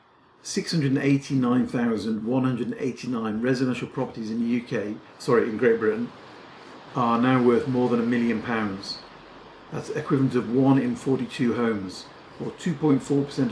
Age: 50-69